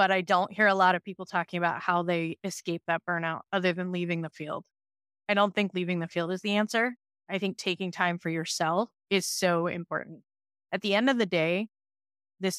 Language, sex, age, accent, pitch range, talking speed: English, female, 20-39, American, 165-195 Hz, 215 wpm